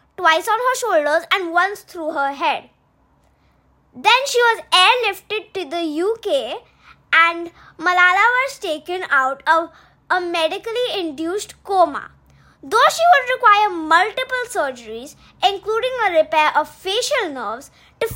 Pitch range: 315-445 Hz